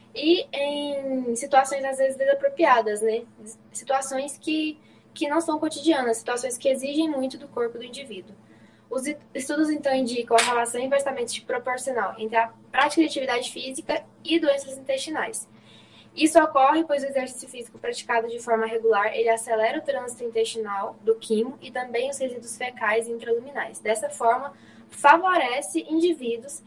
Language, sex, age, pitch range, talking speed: Portuguese, female, 10-29, 230-280 Hz, 150 wpm